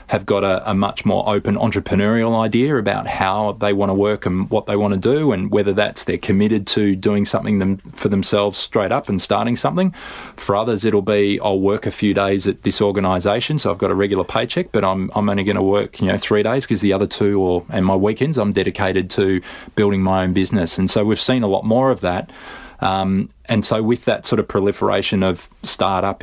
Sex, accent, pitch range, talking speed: male, Australian, 95-110 Hz, 230 wpm